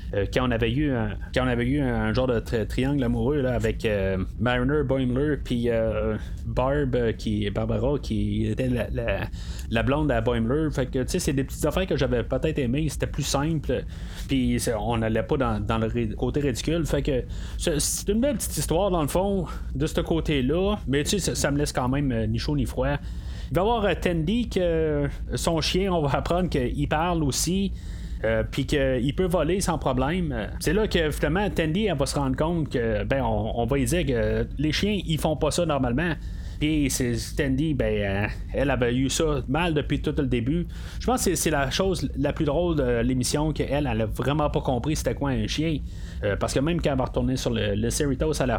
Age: 30-49